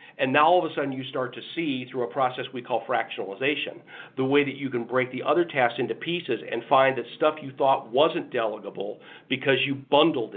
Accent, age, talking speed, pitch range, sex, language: American, 50-69, 220 wpm, 125-150 Hz, male, English